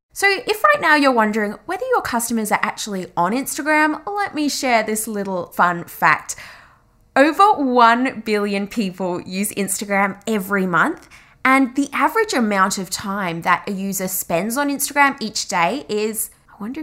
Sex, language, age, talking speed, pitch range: female, English, 20-39, 160 wpm, 200-295 Hz